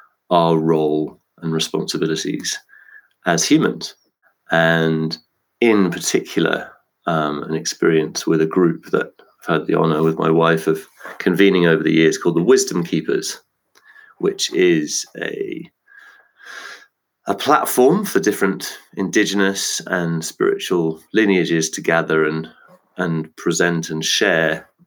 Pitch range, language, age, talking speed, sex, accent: 80-95 Hz, English, 30-49, 120 wpm, male, British